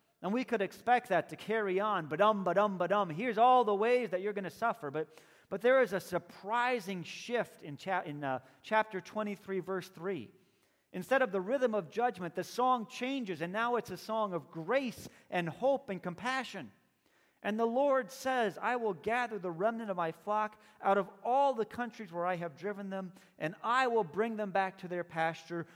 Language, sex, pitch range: English, male, 180-230 Hz